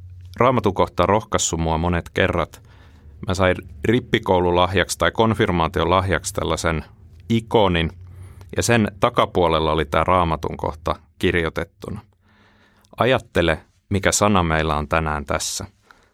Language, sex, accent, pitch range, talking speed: Finnish, male, native, 85-105 Hz, 110 wpm